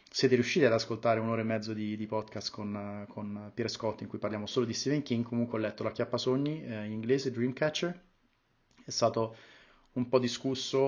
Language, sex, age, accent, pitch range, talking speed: Italian, male, 30-49, native, 105-120 Hz, 200 wpm